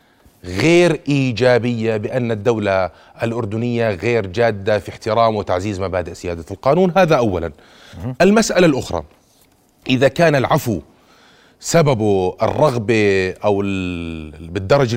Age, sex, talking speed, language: 30-49, male, 95 wpm, Arabic